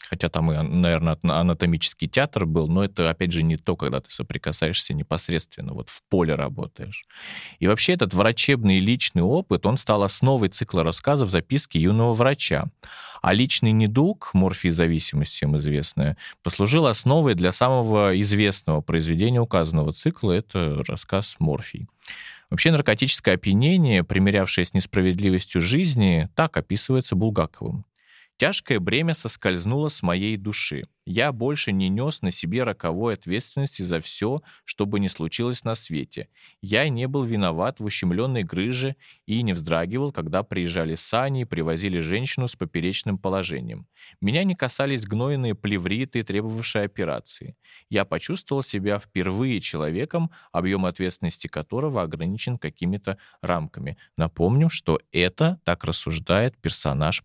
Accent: native